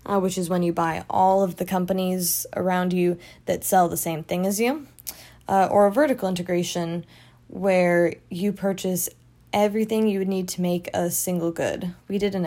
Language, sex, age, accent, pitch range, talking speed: English, female, 20-39, American, 175-205 Hz, 190 wpm